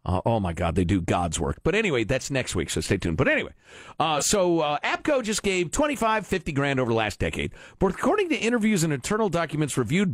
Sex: male